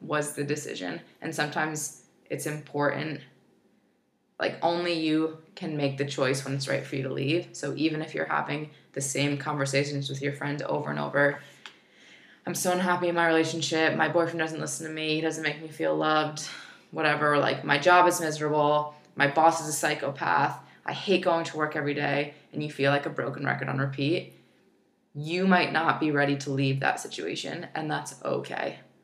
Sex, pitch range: female, 140-165 Hz